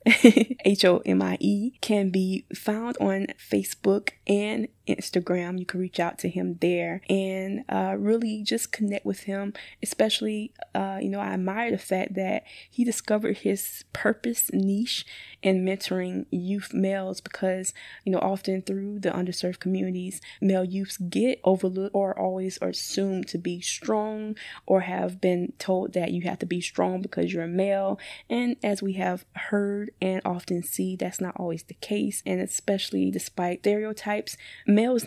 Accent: American